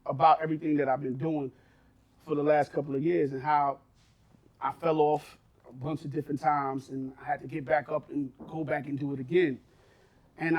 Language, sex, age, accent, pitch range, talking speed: English, male, 30-49, American, 145-185 Hz, 210 wpm